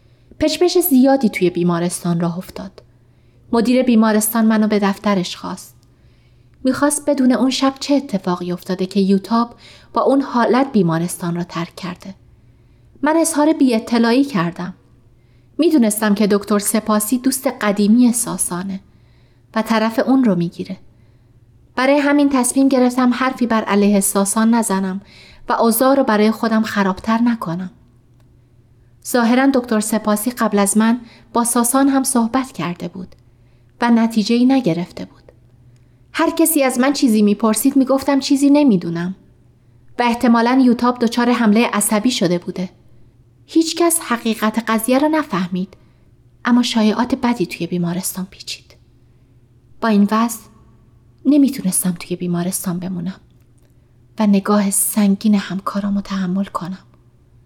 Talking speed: 125 wpm